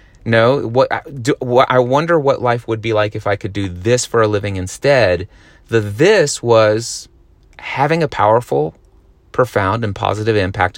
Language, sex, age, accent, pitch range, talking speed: English, male, 30-49, American, 100-120 Hz, 165 wpm